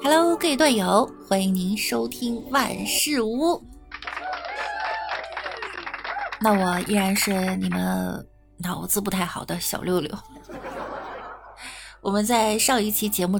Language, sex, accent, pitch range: Chinese, female, native, 190-255 Hz